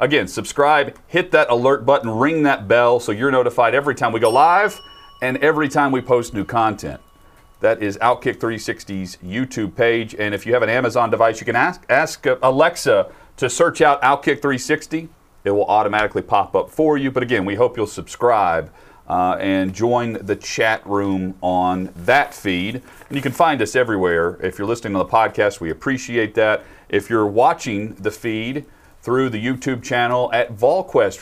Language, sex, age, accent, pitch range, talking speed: English, male, 40-59, American, 100-130 Hz, 185 wpm